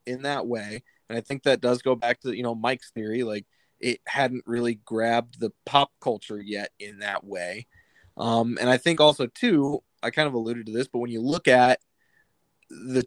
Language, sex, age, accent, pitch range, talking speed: English, male, 20-39, American, 115-135 Hz, 205 wpm